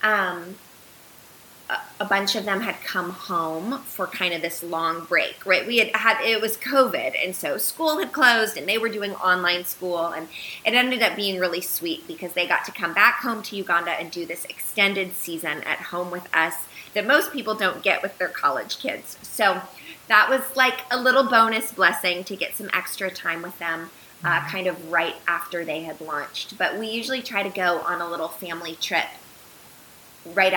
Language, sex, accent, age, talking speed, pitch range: English, female, American, 20-39, 200 wpm, 170-215 Hz